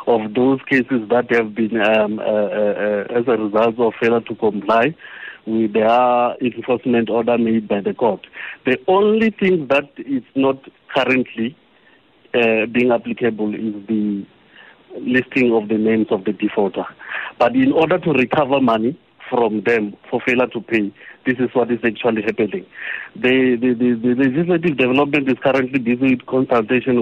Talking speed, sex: 160 wpm, male